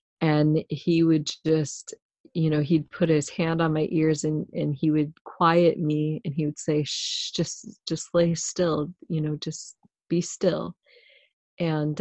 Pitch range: 150-165 Hz